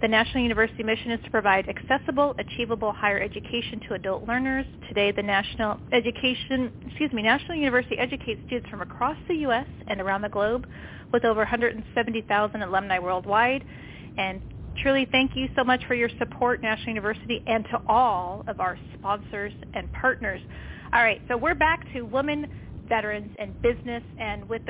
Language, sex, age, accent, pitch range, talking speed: English, female, 30-49, American, 215-255 Hz, 160 wpm